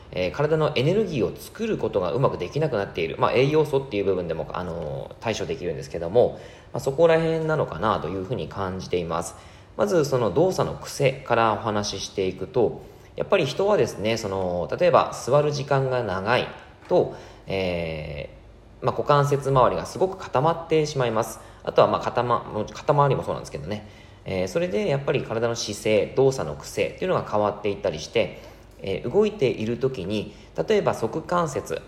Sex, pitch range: male, 100-145 Hz